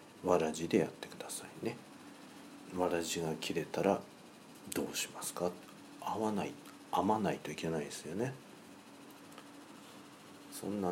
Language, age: Japanese, 50-69